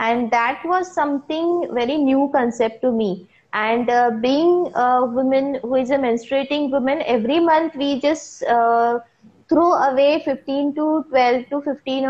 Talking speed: 155 wpm